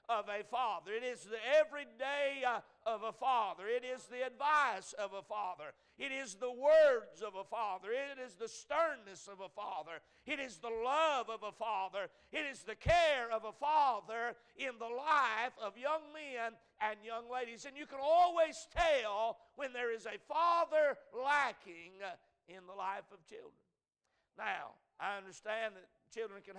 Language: English